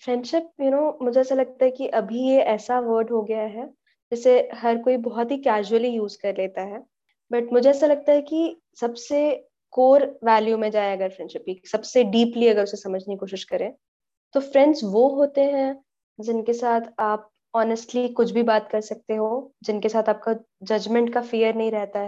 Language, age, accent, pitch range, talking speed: Hindi, 20-39, native, 215-265 Hz, 190 wpm